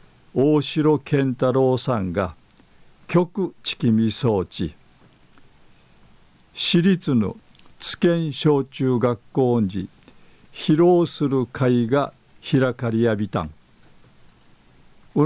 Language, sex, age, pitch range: Japanese, male, 50-69, 120-150 Hz